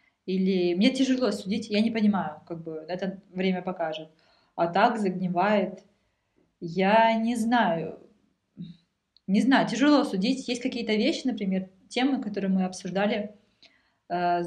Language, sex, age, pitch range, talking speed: Russian, female, 20-39, 185-225 Hz, 130 wpm